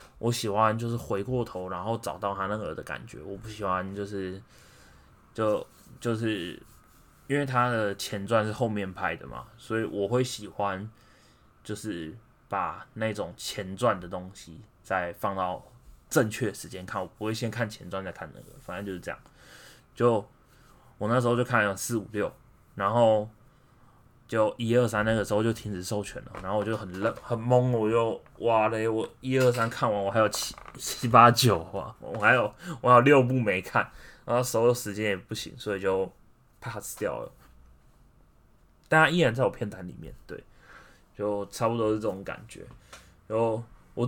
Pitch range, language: 100-120 Hz, Chinese